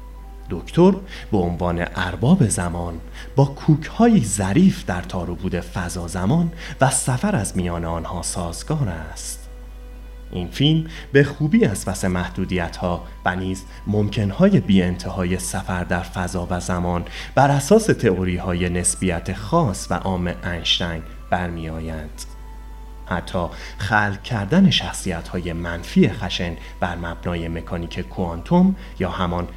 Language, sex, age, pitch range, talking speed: Persian, male, 30-49, 85-115 Hz, 120 wpm